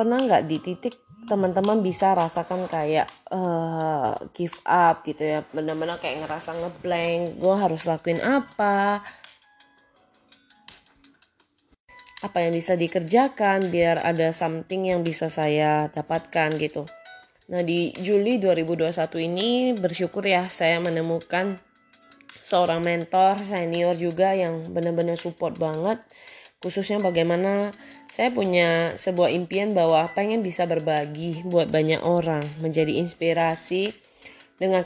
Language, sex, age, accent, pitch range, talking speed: Indonesian, female, 20-39, native, 165-195 Hz, 115 wpm